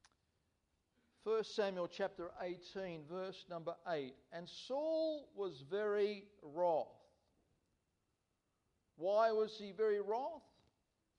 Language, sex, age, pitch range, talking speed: English, male, 50-69, 185-245 Hz, 90 wpm